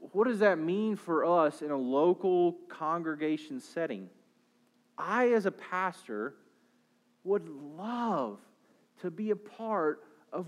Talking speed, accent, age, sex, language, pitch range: 125 wpm, American, 40-59, male, English, 205-265 Hz